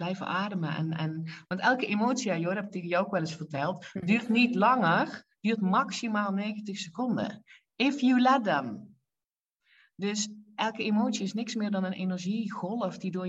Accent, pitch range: Dutch, 145-210 Hz